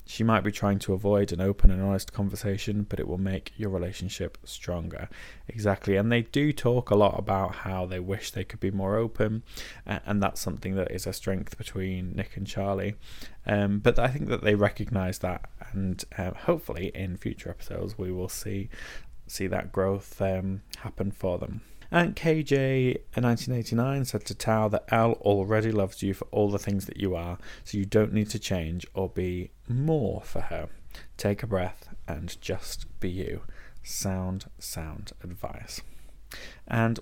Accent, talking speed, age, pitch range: British, 175 wpm, 20-39, 95-115 Hz